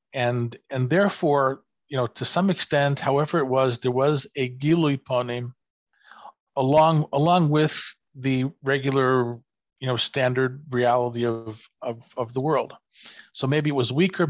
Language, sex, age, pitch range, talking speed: English, male, 40-59, 130-155 Hz, 145 wpm